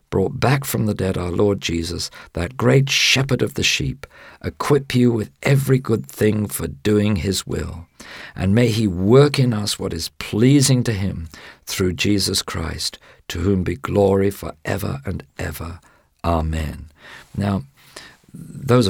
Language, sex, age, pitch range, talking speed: English, male, 50-69, 85-110 Hz, 150 wpm